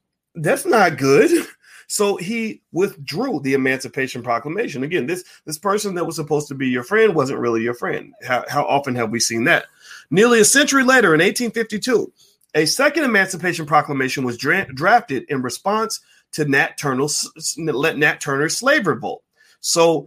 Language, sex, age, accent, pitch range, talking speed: English, male, 30-49, American, 145-230 Hz, 160 wpm